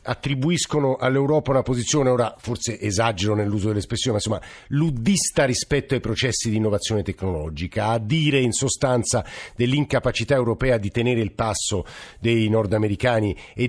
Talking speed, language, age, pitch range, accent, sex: 135 wpm, Italian, 50-69, 105-130 Hz, native, male